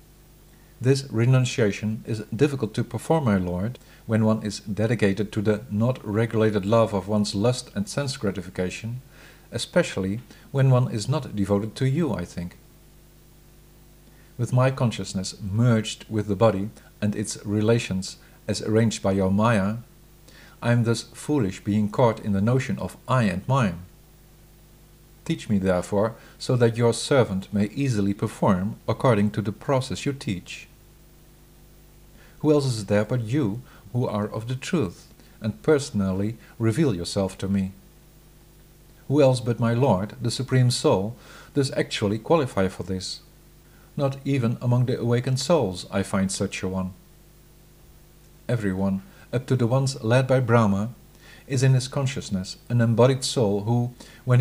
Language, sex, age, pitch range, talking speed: English, male, 50-69, 105-140 Hz, 150 wpm